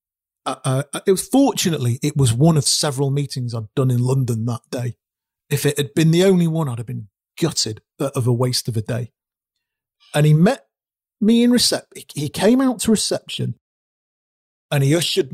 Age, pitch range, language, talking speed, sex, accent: 40-59, 120-155 Hz, English, 190 wpm, male, British